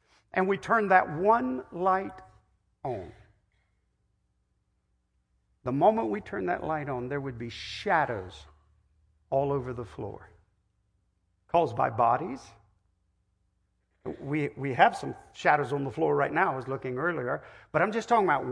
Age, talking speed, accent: 50-69, 145 wpm, American